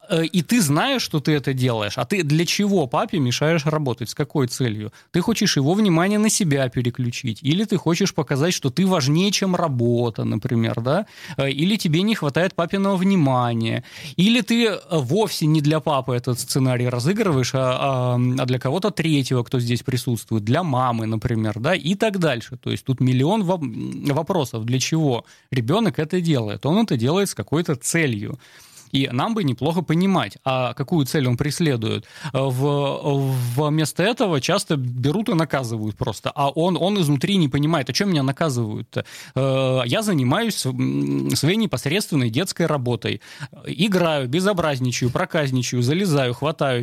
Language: Russian